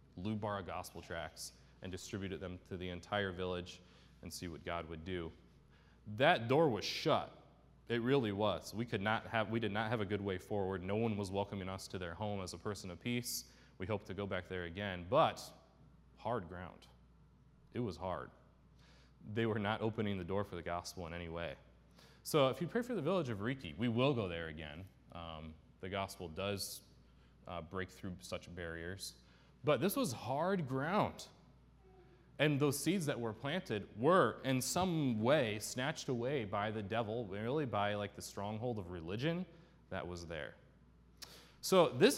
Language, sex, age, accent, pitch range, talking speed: English, male, 20-39, American, 90-130 Hz, 180 wpm